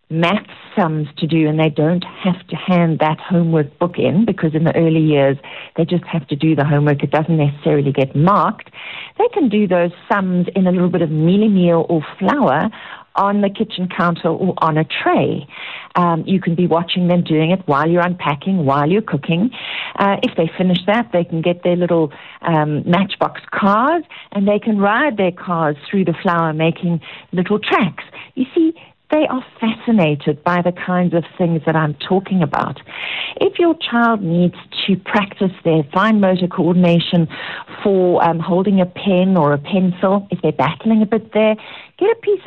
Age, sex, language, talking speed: 50-69, female, English, 190 wpm